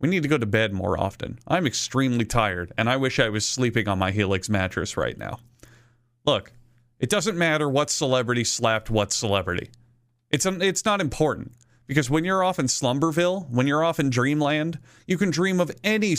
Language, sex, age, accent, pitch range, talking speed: English, male, 30-49, American, 115-155 Hz, 195 wpm